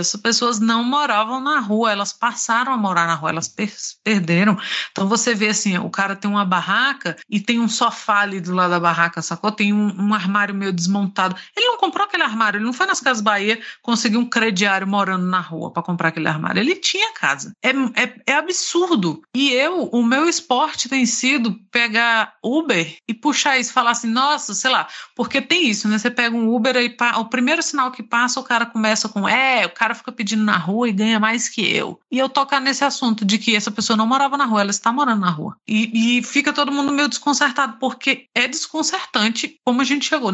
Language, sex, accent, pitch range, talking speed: Portuguese, female, Brazilian, 200-265 Hz, 215 wpm